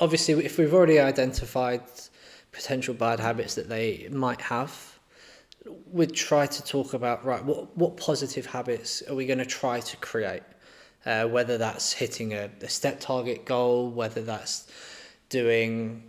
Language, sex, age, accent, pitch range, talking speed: English, male, 20-39, British, 125-150 Hz, 150 wpm